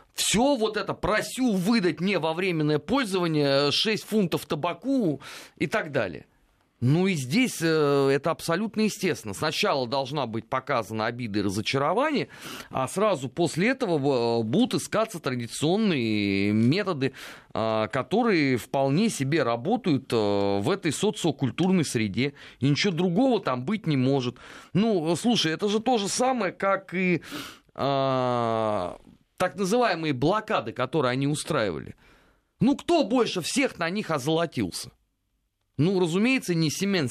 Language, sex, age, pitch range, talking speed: Russian, male, 30-49, 130-200 Hz, 125 wpm